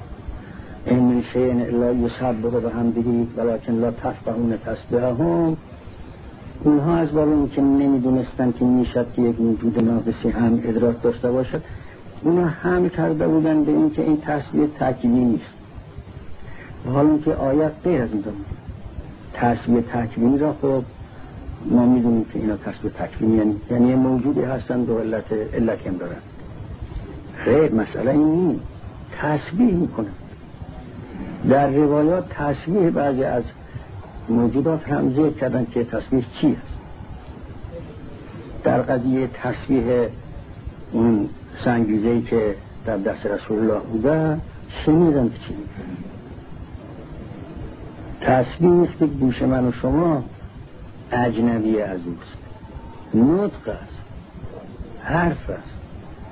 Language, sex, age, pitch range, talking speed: Persian, male, 60-79, 110-140 Hz, 115 wpm